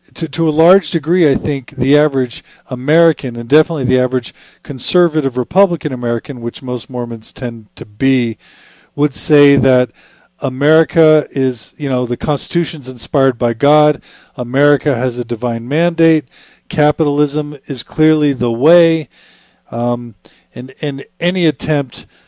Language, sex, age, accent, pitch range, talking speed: English, male, 50-69, American, 120-150 Hz, 135 wpm